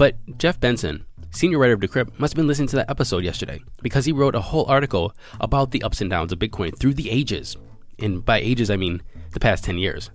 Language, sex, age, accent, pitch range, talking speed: English, male, 20-39, American, 100-130 Hz, 235 wpm